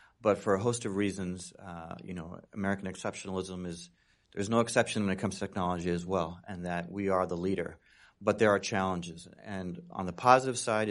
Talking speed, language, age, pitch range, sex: 205 wpm, English, 40-59, 85-100 Hz, male